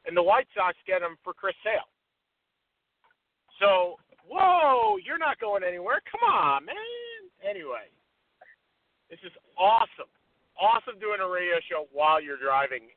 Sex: male